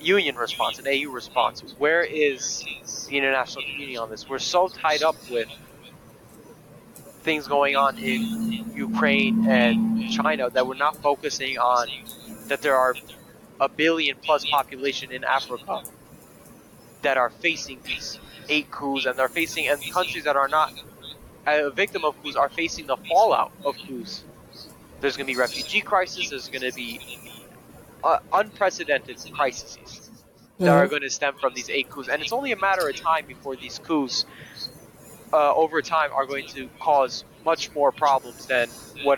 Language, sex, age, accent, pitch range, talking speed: English, male, 20-39, American, 135-160 Hz, 160 wpm